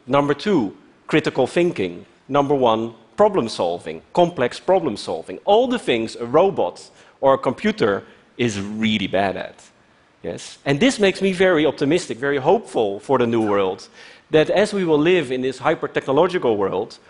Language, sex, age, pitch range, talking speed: Portuguese, male, 40-59, 120-165 Hz, 150 wpm